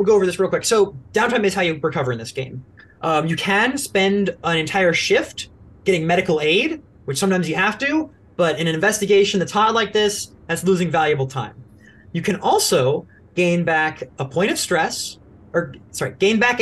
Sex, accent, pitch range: male, American, 130-200 Hz